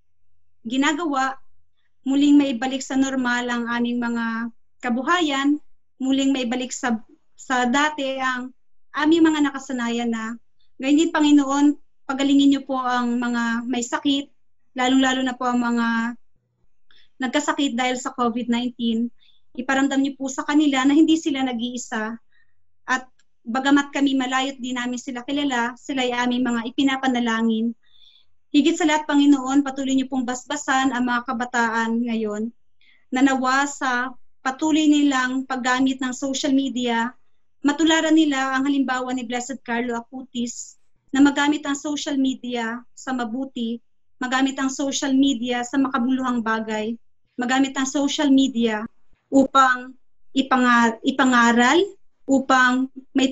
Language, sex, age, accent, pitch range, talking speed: English, female, 20-39, Filipino, 240-275 Hz, 125 wpm